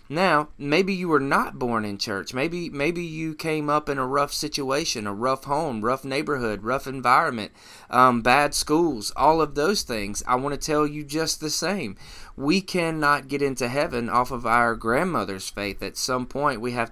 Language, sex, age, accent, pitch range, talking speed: English, male, 20-39, American, 110-150 Hz, 190 wpm